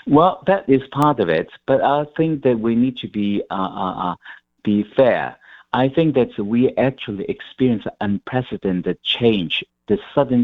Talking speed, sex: 160 wpm, male